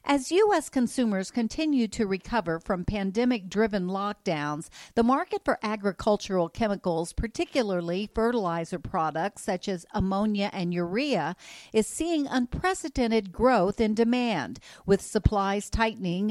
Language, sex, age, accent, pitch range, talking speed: English, female, 50-69, American, 190-250 Hz, 115 wpm